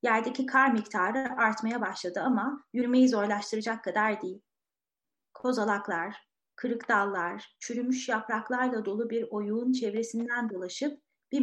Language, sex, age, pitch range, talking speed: Turkish, female, 30-49, 215-270 Hz, 110 wpm